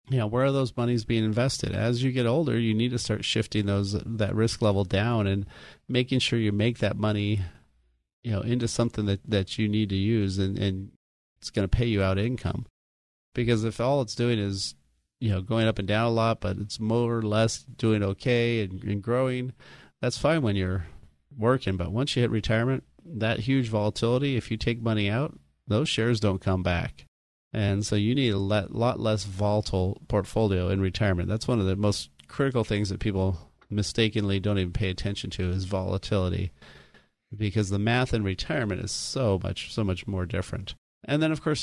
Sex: male